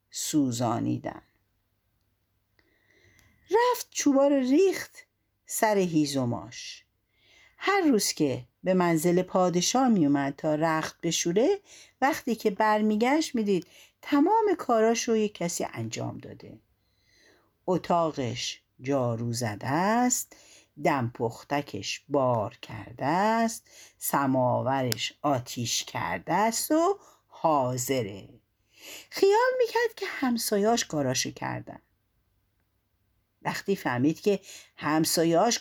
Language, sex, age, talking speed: Persian, female, 50-69, 90 wpm